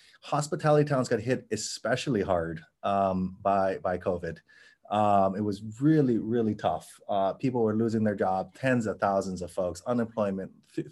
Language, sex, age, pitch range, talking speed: English, male, 30-49, 110-155 Hz, 160 wpm